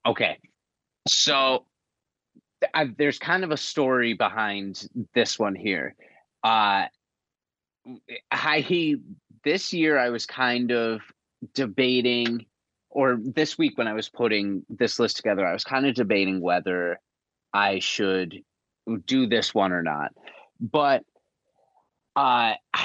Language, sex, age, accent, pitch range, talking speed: English, male, 30-49, American, 100-130 Hz, 125 wpm